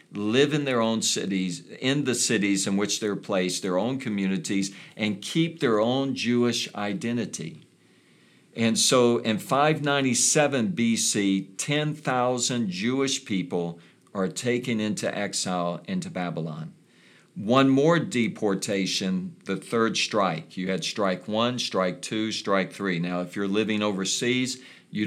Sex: male